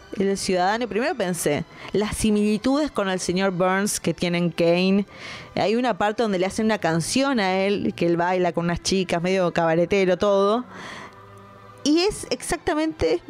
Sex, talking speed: female, 160 wpm